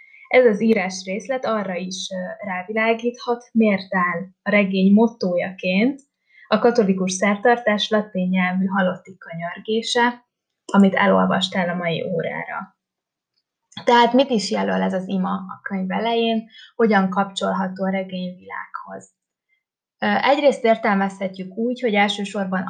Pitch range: 190-225 Hz